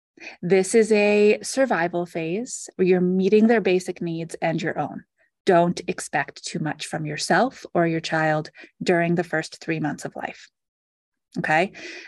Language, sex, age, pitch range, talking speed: English, female, 30-49, 170-220 Hz, 155 wpm